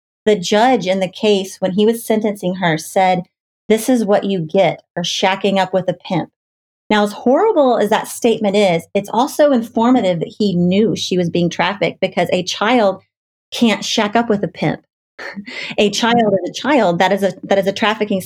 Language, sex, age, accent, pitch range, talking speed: English, female, 30-49, American, 185-220 Hz, 190 wpm